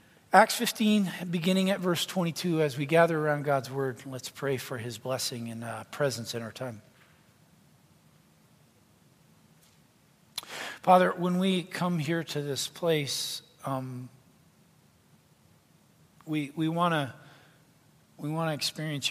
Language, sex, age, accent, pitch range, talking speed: English, male, 40-59, American, 135-165 Hz, 120 wpm